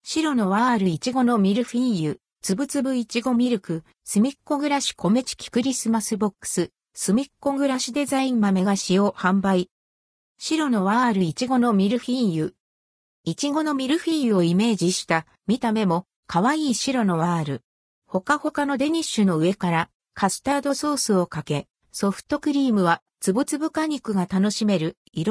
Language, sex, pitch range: Japanese, female, 180-265 Hz